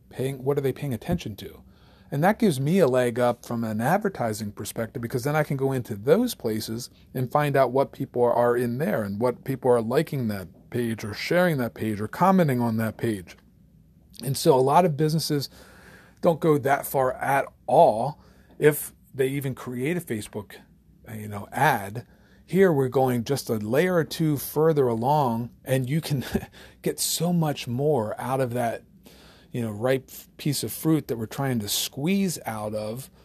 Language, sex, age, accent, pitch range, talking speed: English, male, 40-59, American, 120-155 Hz, 190 wpm